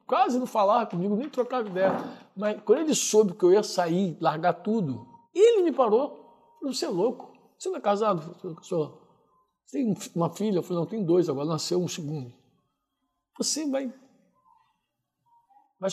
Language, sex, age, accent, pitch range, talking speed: Portuguese, male, 60-79, Brazilian, 185-260 Hz, 165 wpm